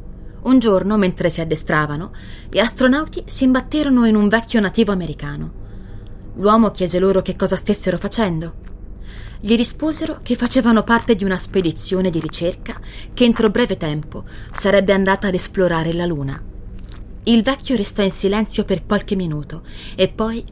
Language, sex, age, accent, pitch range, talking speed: Italian, female, 20-39, native, 165-225 Hz, 150 wpm